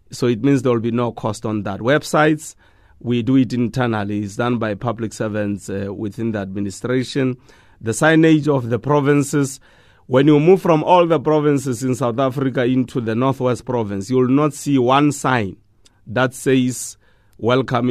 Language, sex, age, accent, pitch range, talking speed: English, male, 30-49, South African, 110-135 Hz, 175 wpm